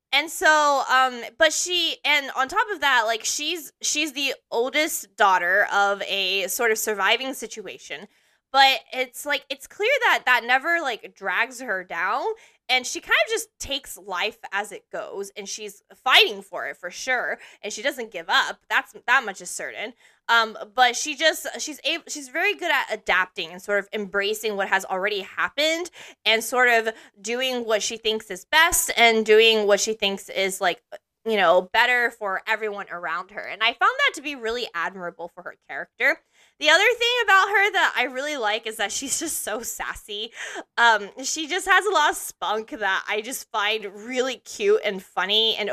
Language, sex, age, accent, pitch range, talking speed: English, female, 20-39, American, 210-300 Hz, 190 wpm